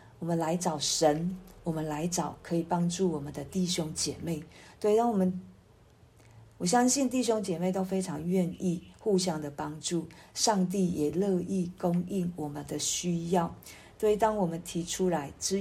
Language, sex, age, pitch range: Chinese, female, 50-69, 155-190 Hz